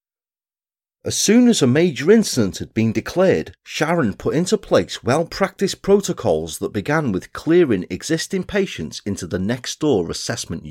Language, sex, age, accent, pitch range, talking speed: English, male, 40-59, British, 95-160 Hz, 140 wpm